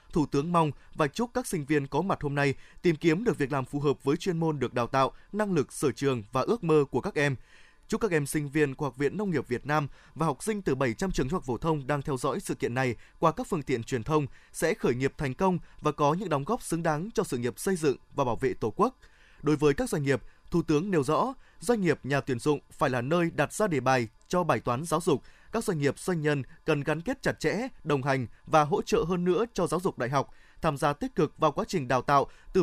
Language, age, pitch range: Vietnamese, 20-39, 140-180 Hz